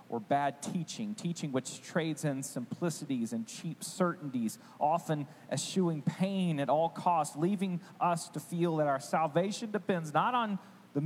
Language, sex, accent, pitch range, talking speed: English, male, American, 135-195 Hz, 150 wpm